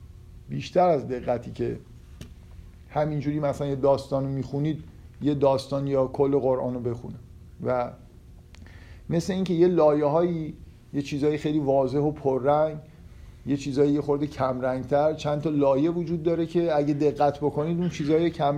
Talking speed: 140 wpm